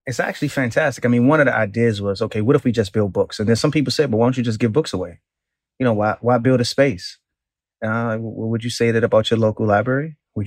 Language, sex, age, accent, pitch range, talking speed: English, male, 30-49, American, 110-125 Hz, 270 wpm